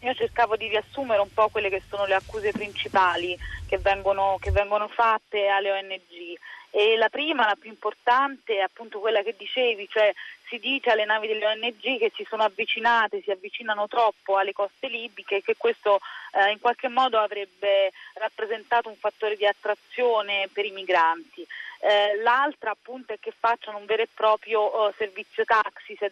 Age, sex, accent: 30-49, female, native